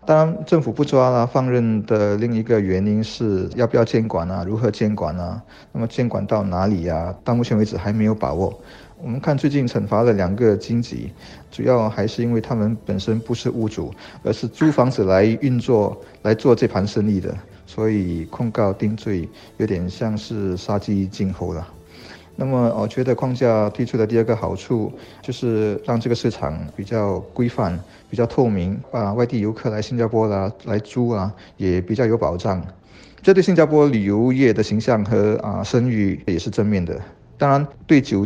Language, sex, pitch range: Chinese, male, 100-120 Hz